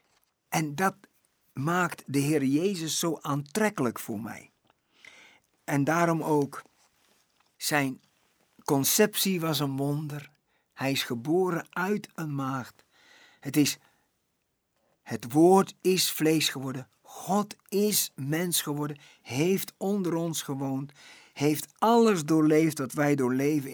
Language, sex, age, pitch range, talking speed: Dutch, male, 50-69, 140-180 Hz, 110 wpm